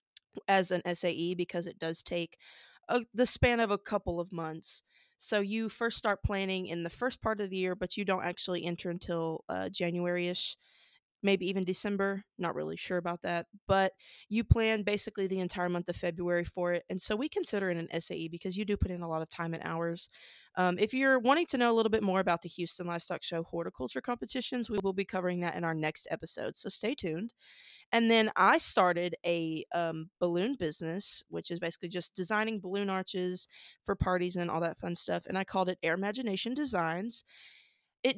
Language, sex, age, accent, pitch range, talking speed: English, female, 20-39, American, 170-205 Hz, 205 wpm